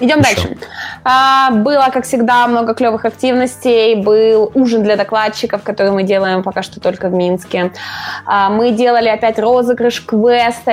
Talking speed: 140 wpm